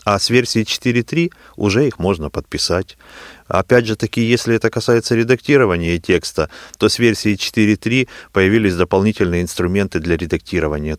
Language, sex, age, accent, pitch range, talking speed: Russian, male, 30-49, native, 85-115 Hz, 135 wpm